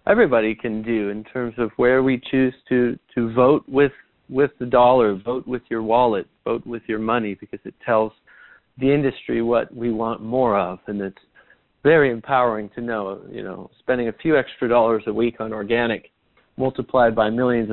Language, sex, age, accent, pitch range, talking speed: English, male, 40-59, American, 110-135 Hz, 185 wpm